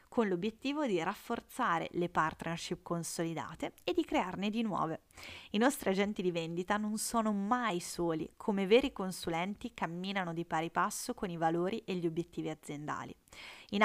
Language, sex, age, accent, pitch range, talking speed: Italian, female, 30-49, native, 175-240 Hz, 155 wpm